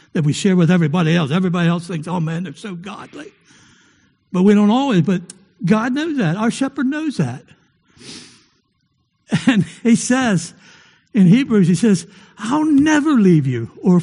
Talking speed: 165 wpm